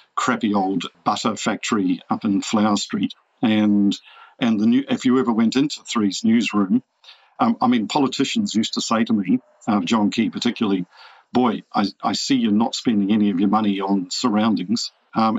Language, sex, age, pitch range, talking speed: English, male, 50-69, 105-155 Hz, 180 wpm